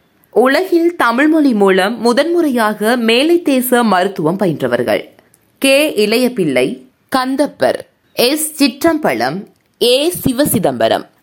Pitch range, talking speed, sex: 210-295 Hz, 75 wpm, female